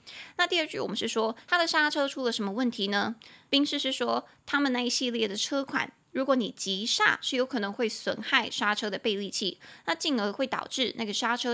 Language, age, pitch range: Chinese, 20-39, 220-275 Hz